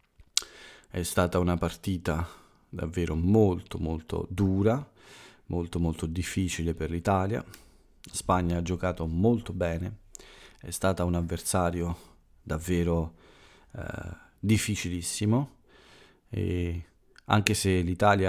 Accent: native